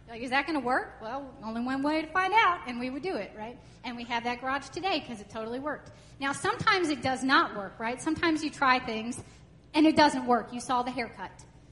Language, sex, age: English, female, 30-49